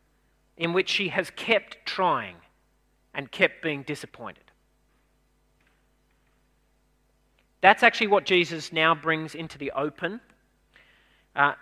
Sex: male